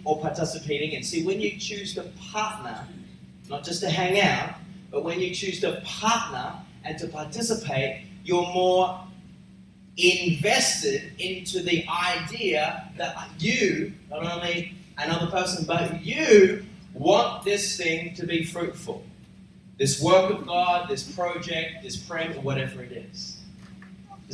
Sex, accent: male, Australian